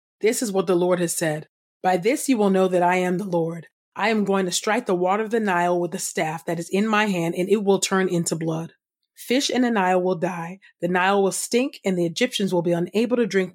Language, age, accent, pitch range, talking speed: English, 30-49, American, 175-200 Hz, 260 wpm